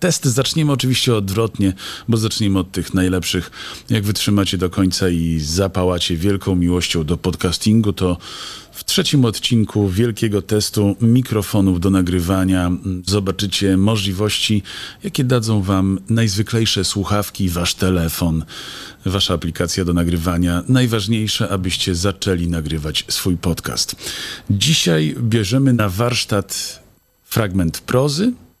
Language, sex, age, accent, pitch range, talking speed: Polish, male, 40-59, native, 95-120 Hz, 110 wpm